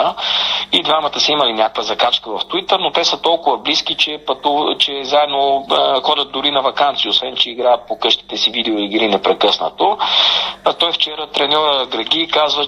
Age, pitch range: 40-59, 115-150 Hz